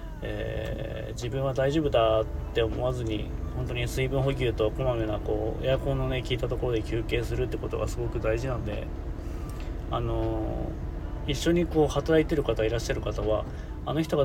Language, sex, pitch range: Japanese, male, 110-135 Hz